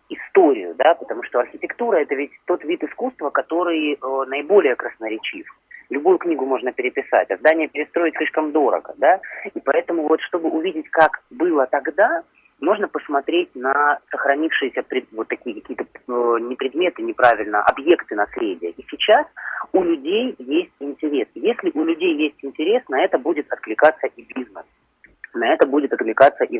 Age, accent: 30-49, native